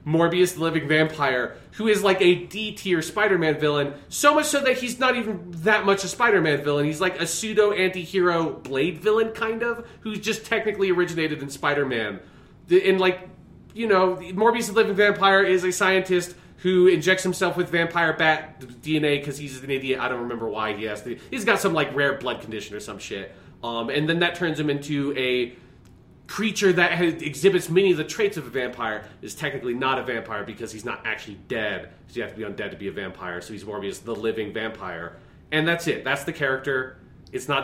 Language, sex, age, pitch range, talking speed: English, male, 30-49, 120-180 Hz, 205 wpm